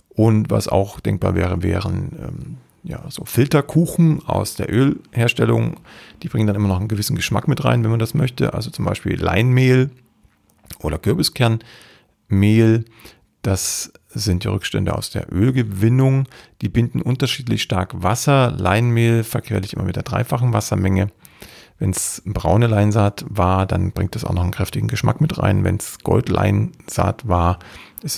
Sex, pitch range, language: male, 95-120 Hz, German